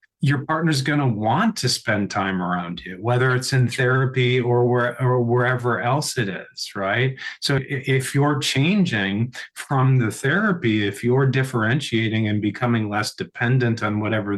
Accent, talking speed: American, 155 wpm